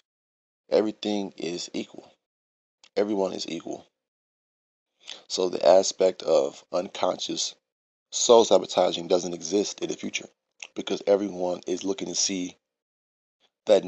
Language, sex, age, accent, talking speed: English, male, 20-39, American, 110 wpm